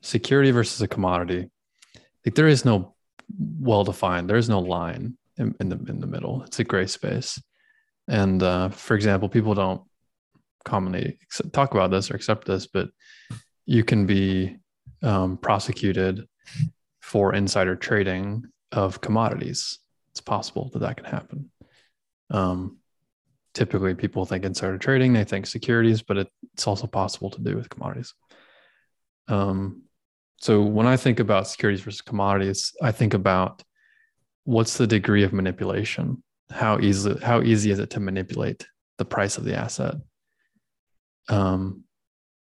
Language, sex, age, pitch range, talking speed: English, male, 20-39, 95-120 Hz, 140 wpm